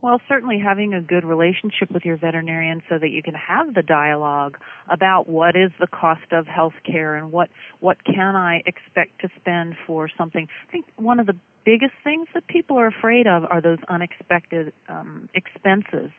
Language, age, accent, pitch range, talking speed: English, 40-59, American, 165-195 Hz, 190 wpm